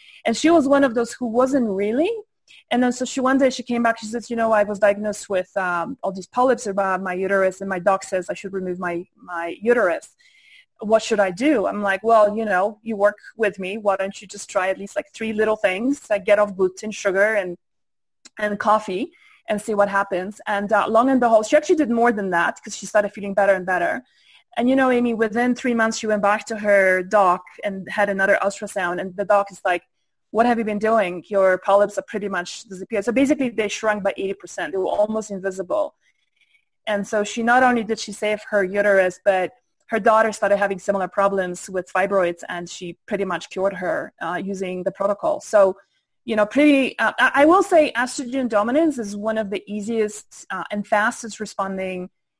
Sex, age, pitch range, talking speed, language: female, 20-39, 195-230 Hz, 215 wpm, English